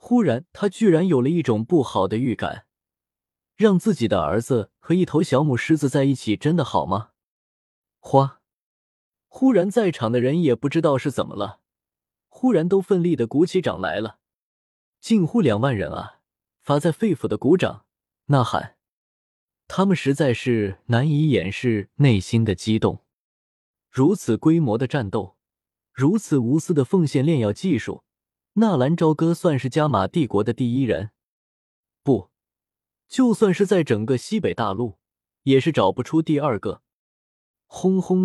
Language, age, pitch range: Chinese, 20-39, 115-170 Hz